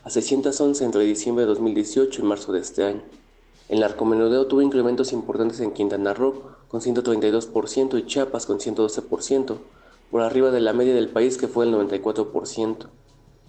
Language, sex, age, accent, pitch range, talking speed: Spanish, male, 20-39, Mexican, 105-125 Hz, 160 wpm